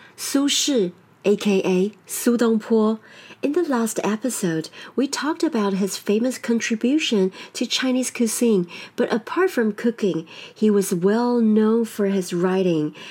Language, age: English, 40-59